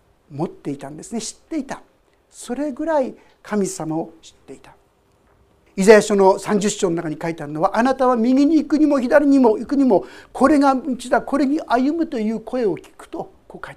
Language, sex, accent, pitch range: Japanese, male, native, 170-265 Hz